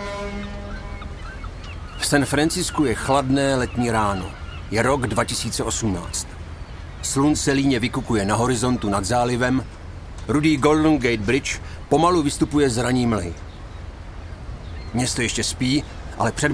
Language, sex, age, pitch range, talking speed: Czech, male, 40-59, 90-150 Hz, 115 wpm